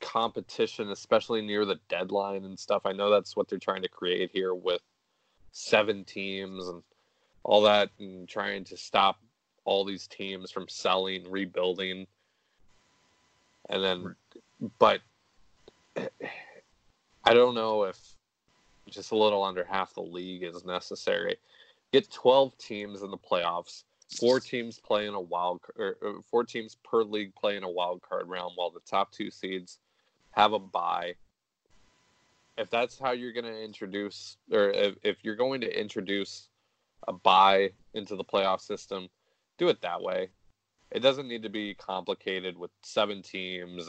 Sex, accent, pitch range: male, American, 95-120 Hz